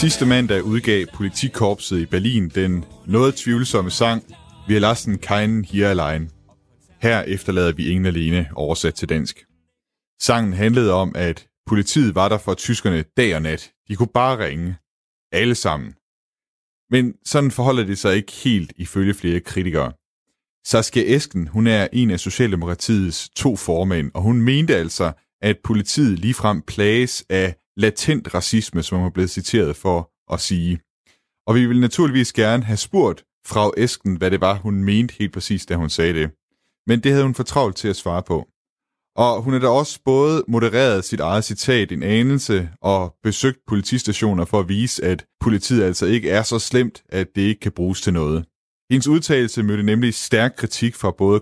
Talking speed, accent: 175 wpm, native